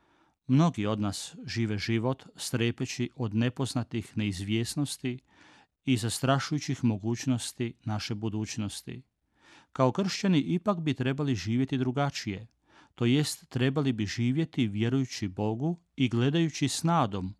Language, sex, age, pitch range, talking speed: Croatian, male, 40-59, 115-140 Hz, 105 wpm